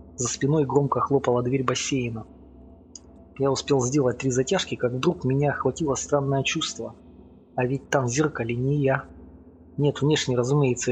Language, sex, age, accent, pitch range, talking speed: Russian, male, 20-39, native, 110-135 Hz, 150 wpm